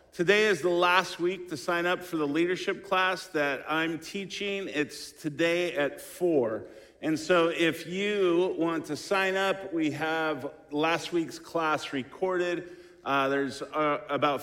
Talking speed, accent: 155 wpm, American